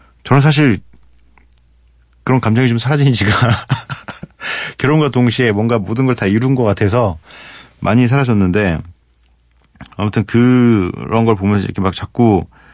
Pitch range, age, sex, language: 85-120 Hz, 40-59, male, Korean